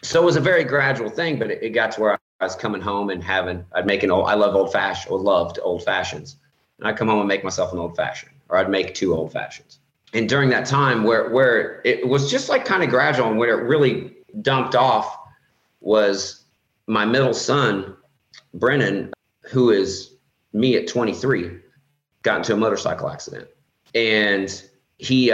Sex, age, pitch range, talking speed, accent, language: male, 40-59, 90-120 Hz, 200 wpm, American, English